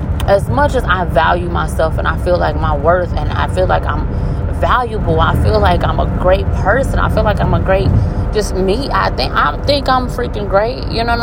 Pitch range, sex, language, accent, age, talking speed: 95-120 Hz, female, English, American, 20-39, 230 wpm